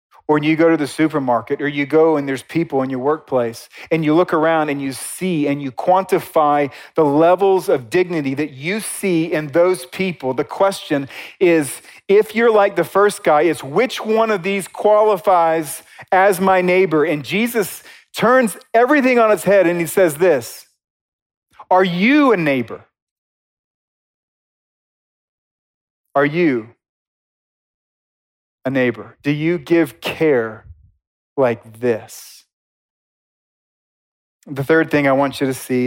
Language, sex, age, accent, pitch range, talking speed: English, male, 40-59, American, 125-170 Hz, 145 wpm